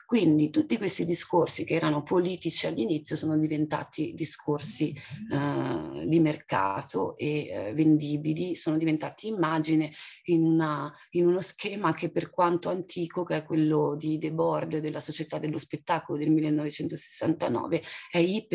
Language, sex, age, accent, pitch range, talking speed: Italian, female, 30-49, native, 155-170 Hz, 130 wpm